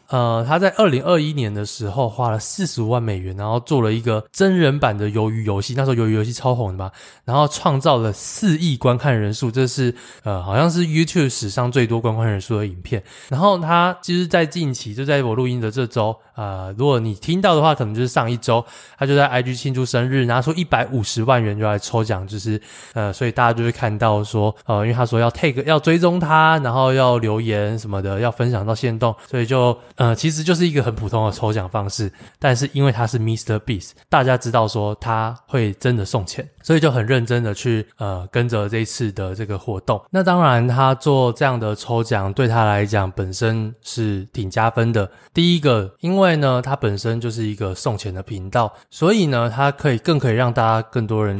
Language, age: Chinese, 20-39